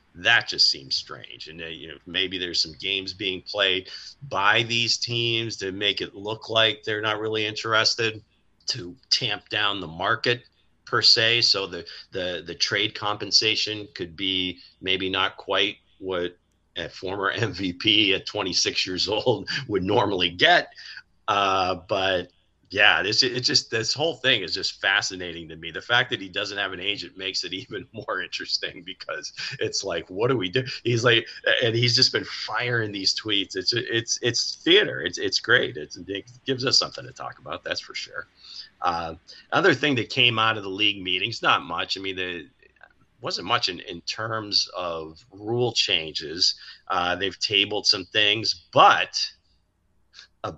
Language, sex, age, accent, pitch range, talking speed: English, male, 40-59, American, 95-120 Hz, 170 wpm